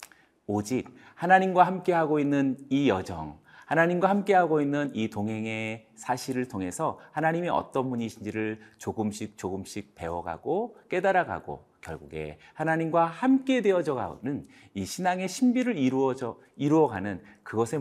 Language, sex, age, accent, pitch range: Korean, male, 40-59, native, 110-175 Hz